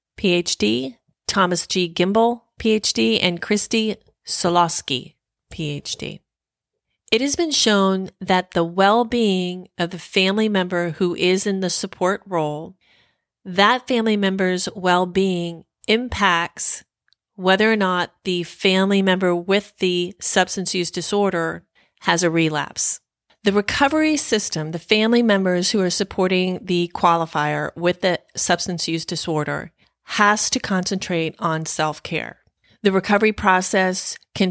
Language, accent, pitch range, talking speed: English, American, 170-200 Hz, 125 wpm